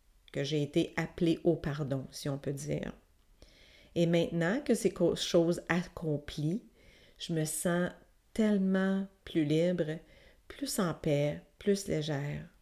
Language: French